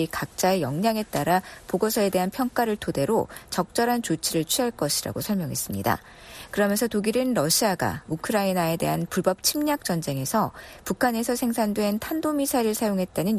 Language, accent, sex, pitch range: Korean, native, female, 160-225 Hz